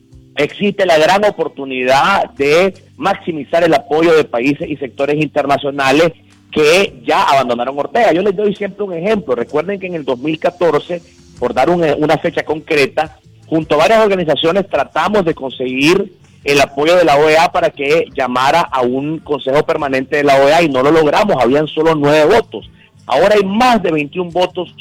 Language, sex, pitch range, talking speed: Spanish, male, 135-175 Hz, 165 wpm